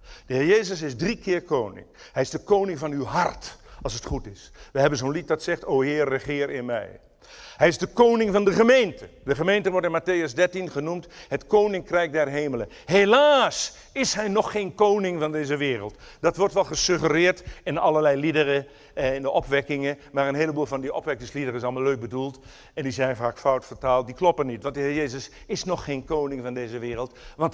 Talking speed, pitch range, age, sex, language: 210 wpm, 140-205 Hz, 50-69, male, Dutch